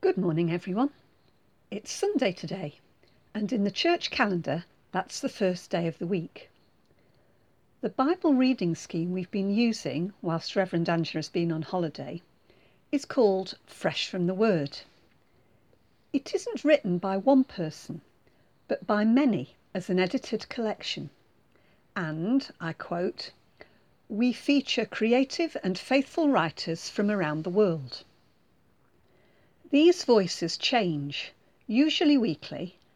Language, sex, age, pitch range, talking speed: English, female, 50-69, 175-255 Hz, 125 wpm